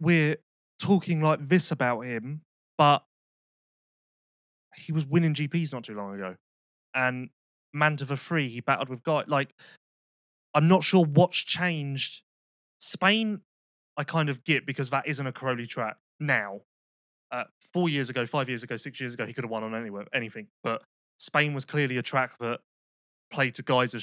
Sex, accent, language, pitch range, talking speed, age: male, British, English, 120-150 Hz, 170 wpm, 20-39